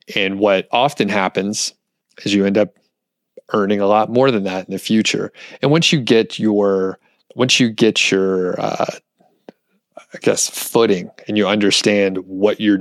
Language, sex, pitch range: English, male, 100-120 Hz